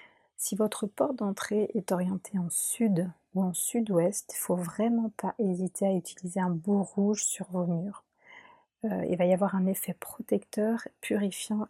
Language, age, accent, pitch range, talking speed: French, 40-59, French, 180-210 Hz, 175 wpm